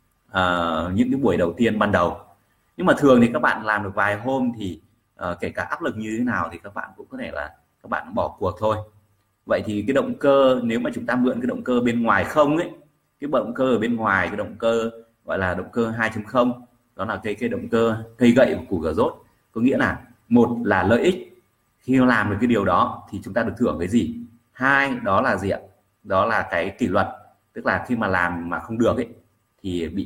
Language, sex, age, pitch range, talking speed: Vietnamese, male, 30-49, 100-120 Hz, 245 wpm